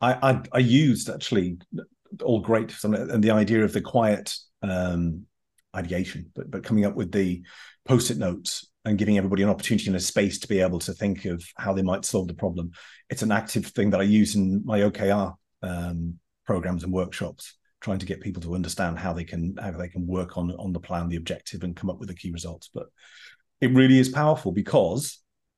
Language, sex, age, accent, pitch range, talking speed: English, male, 40-59, British, 95-115 Hz, 205 wpm